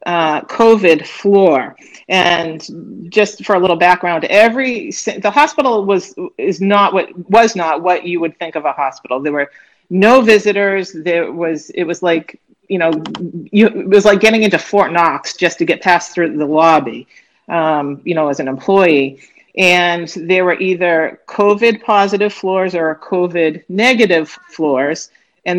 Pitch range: 160-200 Hz